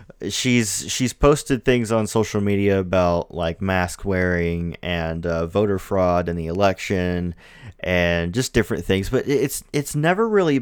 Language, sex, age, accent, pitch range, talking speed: English, male, 30-49, American, 90-115 Hz, 155 wpm